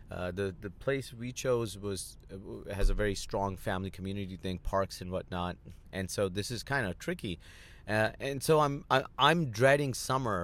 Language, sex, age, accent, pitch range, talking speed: English, male, 30-49, American, 95-125 Hz, 185 wpm